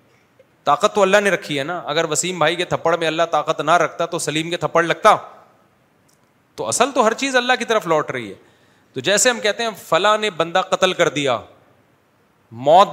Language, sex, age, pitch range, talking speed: Urdu, male, 40-59, 135-185 Hz, 210 wpm